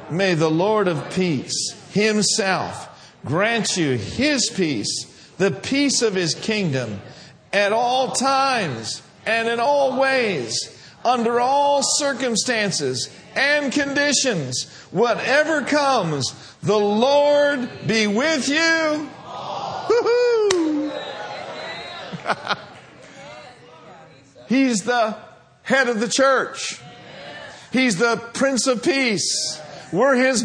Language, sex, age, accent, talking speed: English, male, 50-69, American, 95 wpm